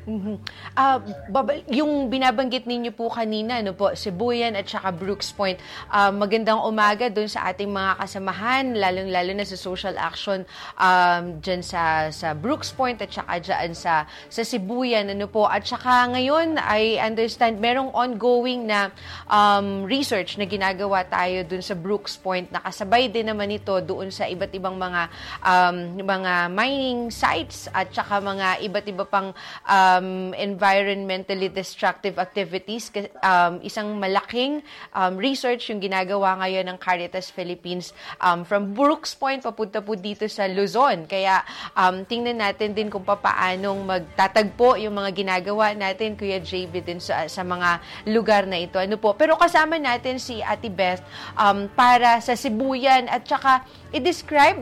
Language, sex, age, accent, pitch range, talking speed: Filipino, female, 20-39, native, 190-245 Hz, 155 wpm